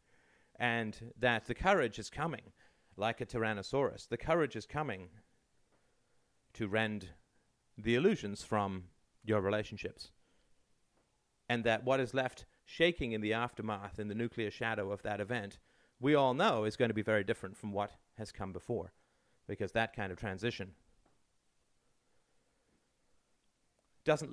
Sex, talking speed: male, 140 wpm